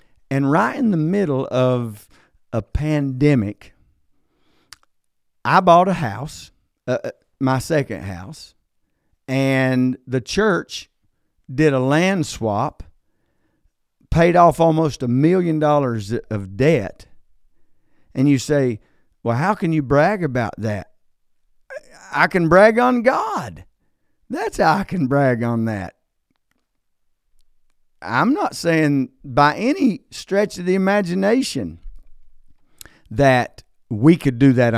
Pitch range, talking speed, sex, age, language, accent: 110-160 Hz, 115 wpm, male, 50-69, English, American